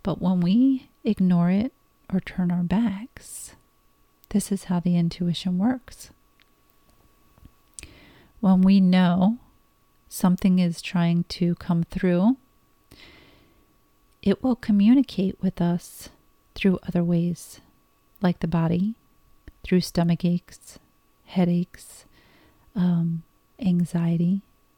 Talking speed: 100 wpm